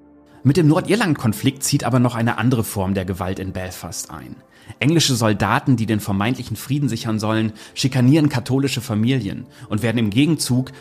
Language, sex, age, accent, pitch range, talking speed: German, male, 30-49, German, 105-130 Hz, 160 wpm